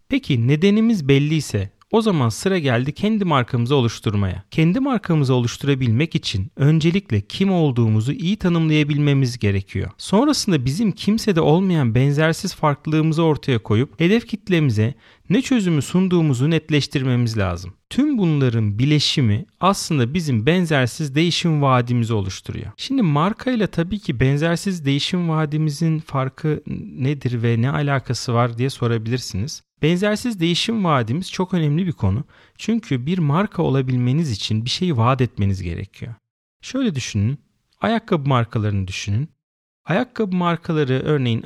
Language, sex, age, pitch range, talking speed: Turkish, male, 40-59, 115-170 Hz, 120 wpm